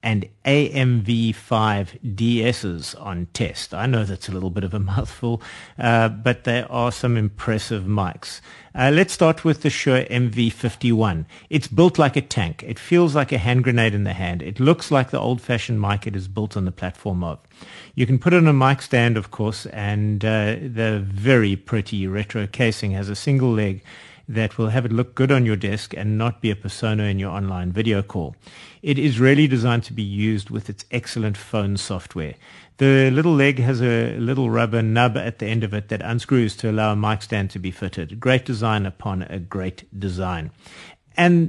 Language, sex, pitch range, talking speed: English, male, 100-130 Hz, 195 wpm